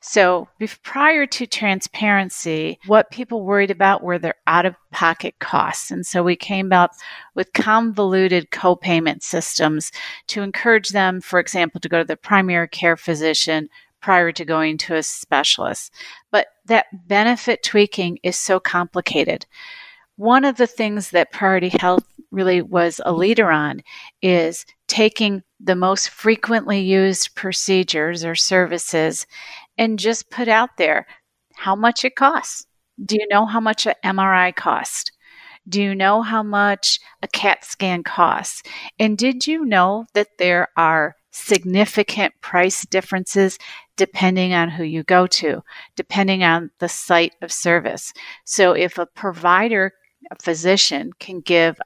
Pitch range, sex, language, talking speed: 175-215 Hz, female, English, 140 wpm